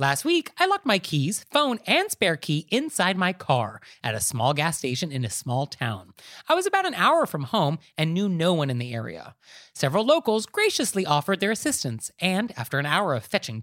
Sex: male